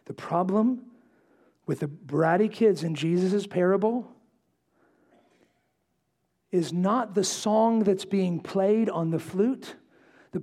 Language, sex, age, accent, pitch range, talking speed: English, male, 40-59, American, 170-240 Hz, 115 wpm